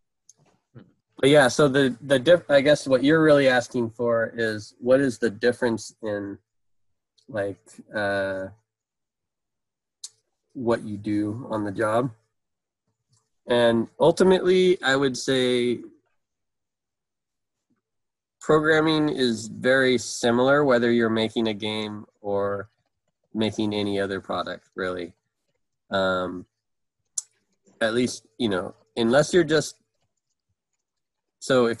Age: 20-39